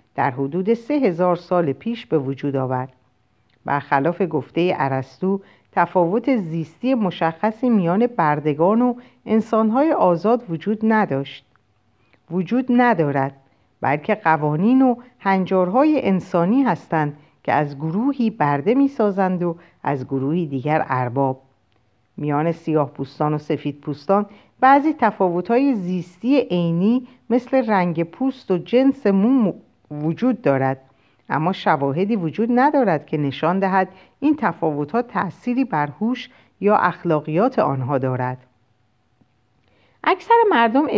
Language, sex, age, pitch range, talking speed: Persian, female, 50-69, 140-225 Hz, 110 wpm